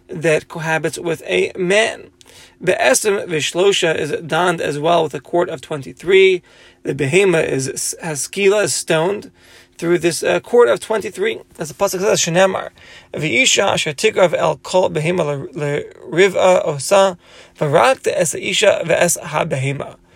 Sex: male